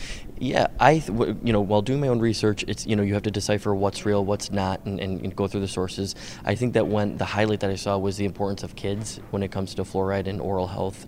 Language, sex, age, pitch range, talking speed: English, male, 20-39, 95-105 Hz, 265 wpm